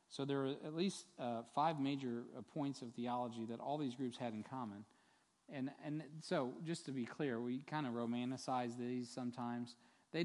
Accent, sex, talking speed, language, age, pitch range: American, male, 185 wpm, English, 40-59, 115-135 Hz